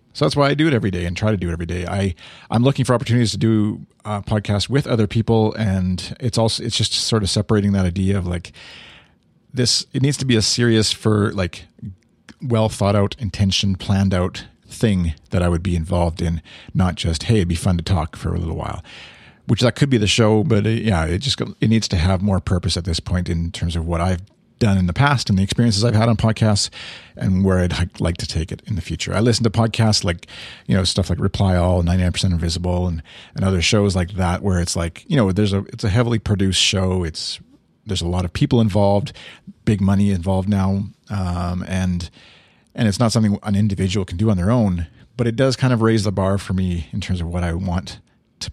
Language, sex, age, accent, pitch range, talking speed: English, male, 40-59, American, 90-115 Hz, 235 wpm